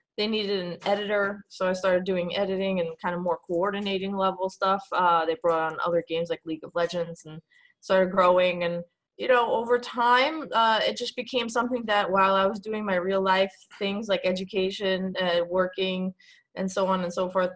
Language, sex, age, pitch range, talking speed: English, female, 20-39, 180-210 Hz, 200 wpm